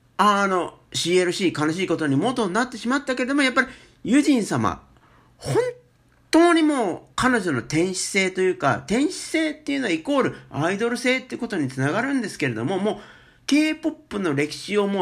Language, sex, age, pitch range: Japanese, male, 50-69, 170-285 Hz